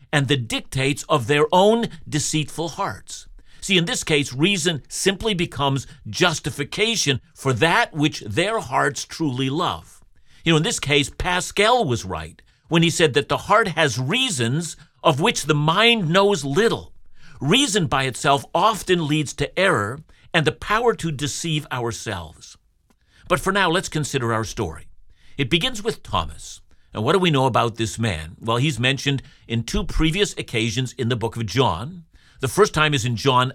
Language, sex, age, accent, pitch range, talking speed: English, male, 50-69, American, 120-165 Hz, 170 wpm